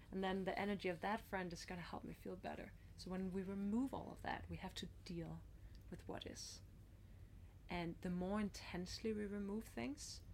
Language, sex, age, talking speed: English, female, 20-39, 205 wpm